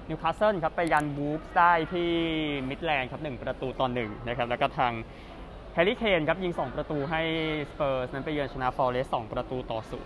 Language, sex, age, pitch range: Thai, male, 20-39, 130-165 Hz